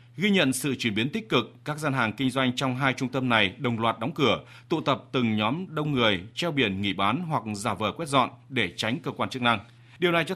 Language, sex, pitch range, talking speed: Vietnamese, male, 120-150 Hz, 260 wpm